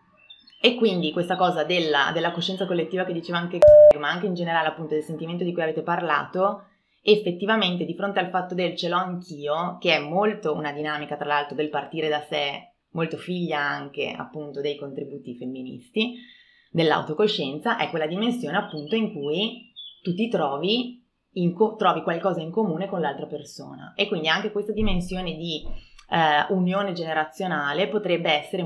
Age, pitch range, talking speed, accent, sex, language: 20-39, 155-200 Hz, 165 wpm, native, female, Italian